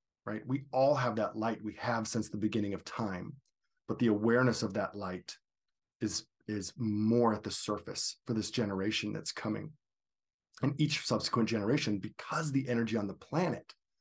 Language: English